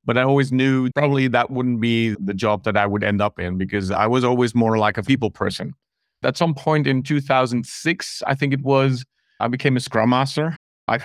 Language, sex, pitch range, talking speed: English, male, 110-135 Hz, 215 wpm